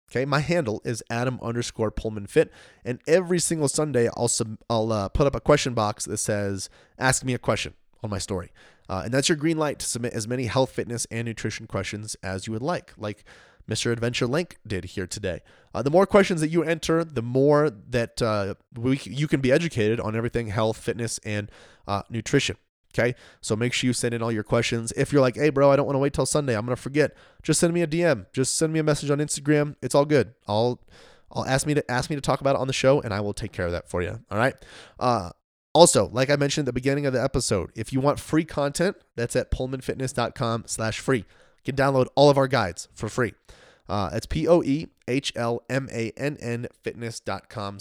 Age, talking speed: 20-39, 220 wpm